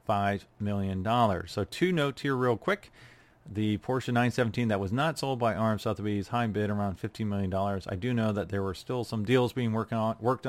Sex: male